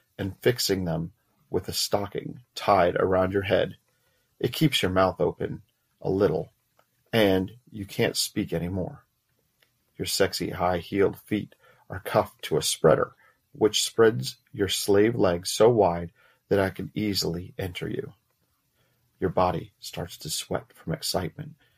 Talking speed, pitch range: 145 wpm, 95-125 Hz